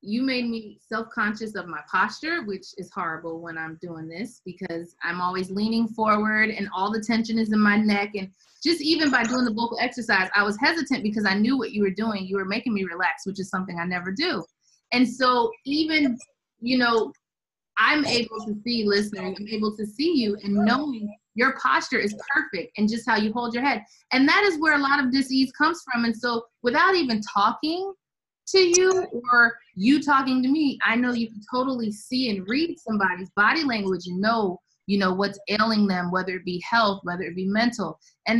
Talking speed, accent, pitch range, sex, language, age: 210 wpm, American, 200-250 Hz, female, English, 30-49